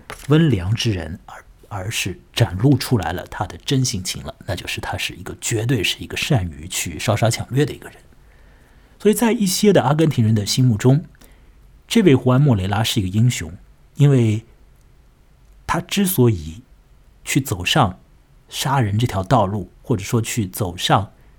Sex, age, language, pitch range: male, 50-69, Chinese, 100-130 Hz